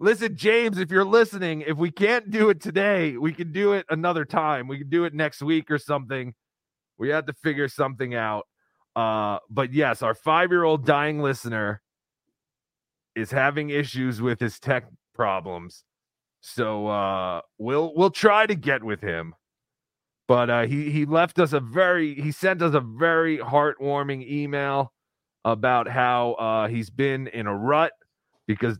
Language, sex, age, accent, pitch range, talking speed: English, male, 30-49, American, 125-170 Hz, 165 wpm